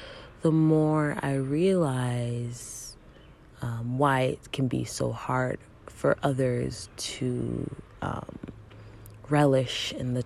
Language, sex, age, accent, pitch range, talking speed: English, female, 20-39, American, 110-150 Hz, 105 wpm